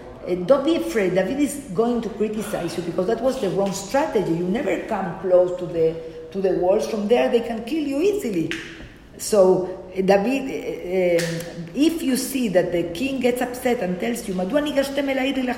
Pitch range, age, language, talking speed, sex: 185-260 Hz, 50-69, English, 190 wpm, female